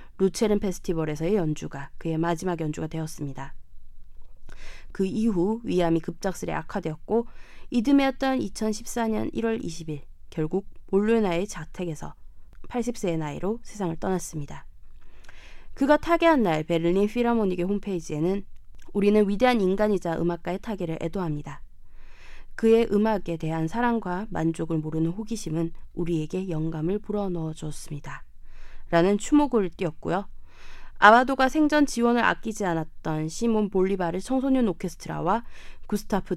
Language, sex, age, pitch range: Korean, female, 20-39, 160-220 Hz